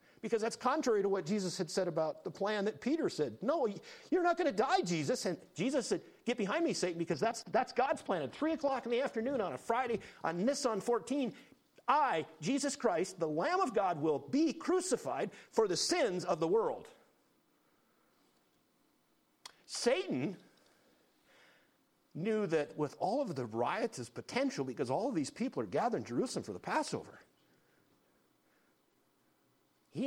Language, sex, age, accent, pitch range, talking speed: English, male, 50-69, American, 150-250 Hz, 170 wpm